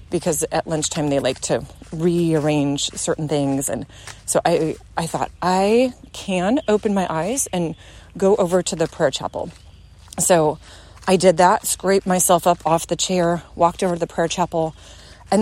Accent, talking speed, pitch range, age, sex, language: American, 165 wpm, 170-245 Hz, 30-49, female, English